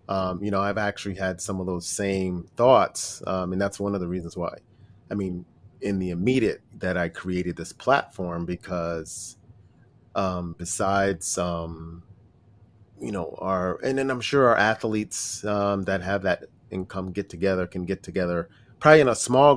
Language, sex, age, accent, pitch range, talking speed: English, male, 30-49, American, 95-115 Hz, 170 wpm